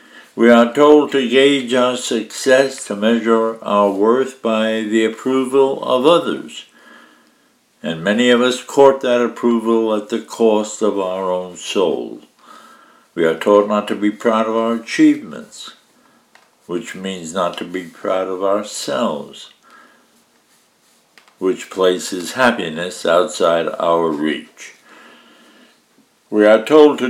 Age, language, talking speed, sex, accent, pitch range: 60-79, English, 130 wpm, male, American, 100-130 Hz